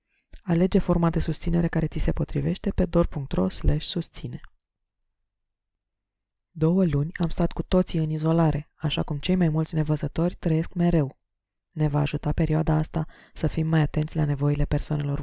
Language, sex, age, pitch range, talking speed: Romanian, female, 20-39, 150-175 Hz, 155 wpm